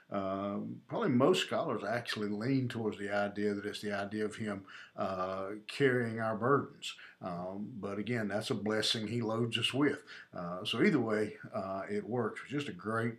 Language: English